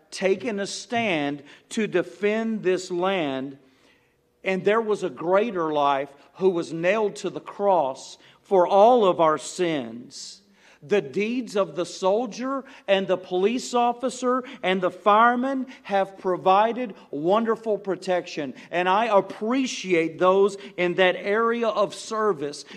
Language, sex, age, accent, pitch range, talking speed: English, male, 40-59, American, 175-220 Hz, 130 wpm